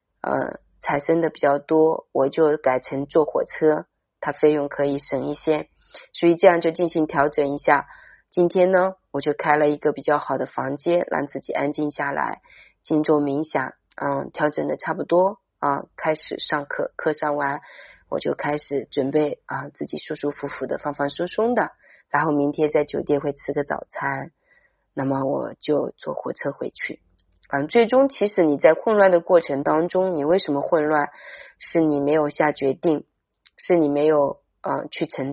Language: Chinese